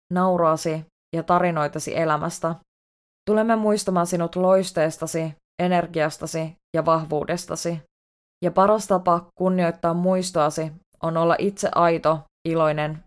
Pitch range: 155-185 Hz